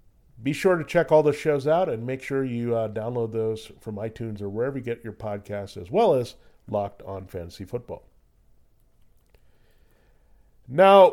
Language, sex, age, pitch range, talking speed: English, male, 40-59, 110-145 Hz, 165 wpm